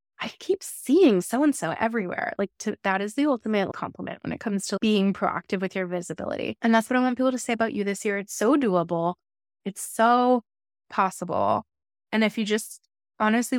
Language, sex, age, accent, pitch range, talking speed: English, female, 20-39, American, 195-230 Hz, 190 wpm